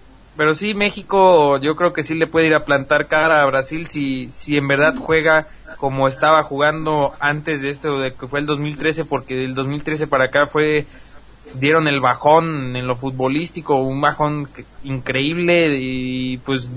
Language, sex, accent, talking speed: English, male, Mexican, 175 wpm